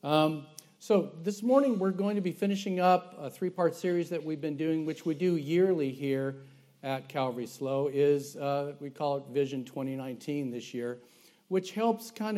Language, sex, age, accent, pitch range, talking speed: English, male, 50-69, American, 135-170 Hz, 180 wpm